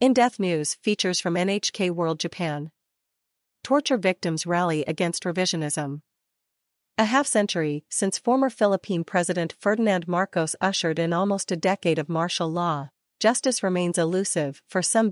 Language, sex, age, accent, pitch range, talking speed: English, female, 40-59, American, 165-200 Hz, 130 wpm